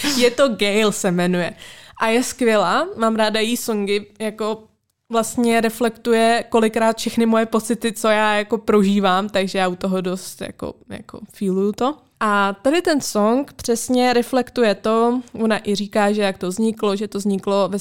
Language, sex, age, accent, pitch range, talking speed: Czech, female, 20-39, native, 190-220 Hz, 165 wpm